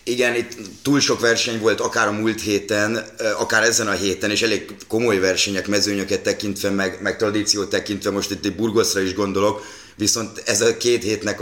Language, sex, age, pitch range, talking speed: Hungarian, male, 30-49, 100-110 Hz, 180 wpm